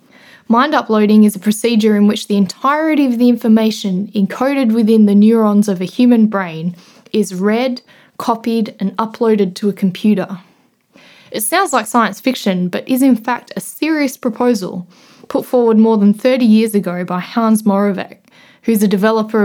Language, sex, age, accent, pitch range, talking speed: English, female, 10-29, Australian, 200-240 Hz, 165 wpm